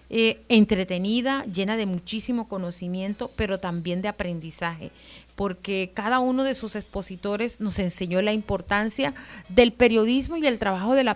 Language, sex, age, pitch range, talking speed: Spanish, female, 30-49, 185-240 Hz, 145 wpm